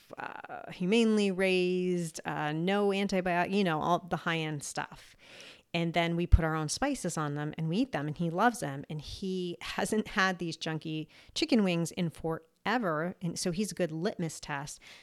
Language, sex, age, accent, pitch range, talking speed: English, female, 30-49, American, 165-195 Hz, 190 wpm